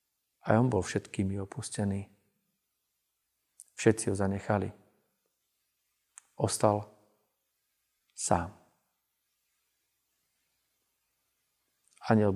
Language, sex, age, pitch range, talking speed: Slovak, male, 40-59, 105-120 Hz, 55 wpm